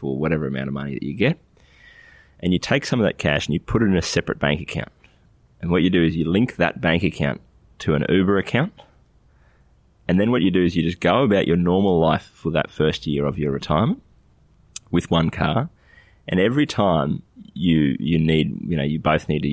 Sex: male